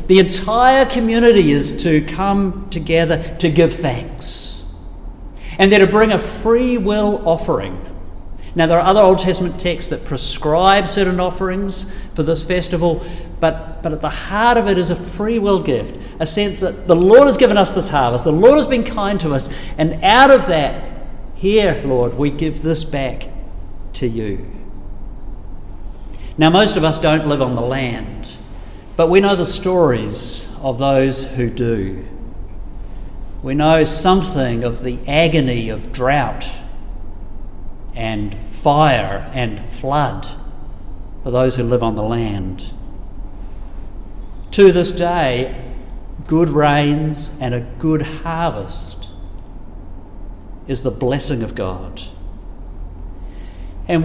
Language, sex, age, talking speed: English, male, 50-69, 140 wpm